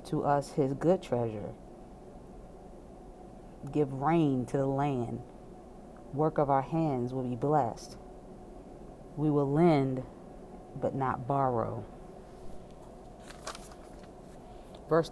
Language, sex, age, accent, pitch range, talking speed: English, female, 30-49, American, 135-170 Hz, 95 wpm